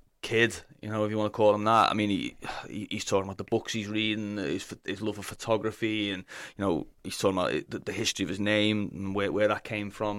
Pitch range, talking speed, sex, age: 100-105 Hz, 255 wpm, male, 30-49